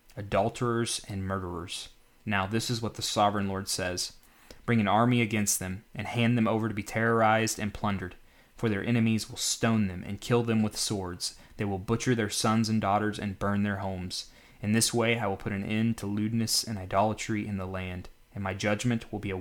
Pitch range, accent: 95-115 Hz, American